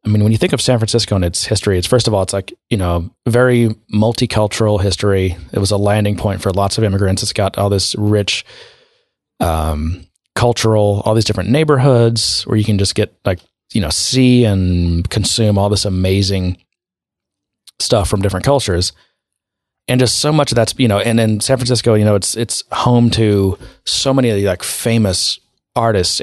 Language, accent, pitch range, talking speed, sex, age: English, American, 95-115 Hz, 195 wpm, male, 30-49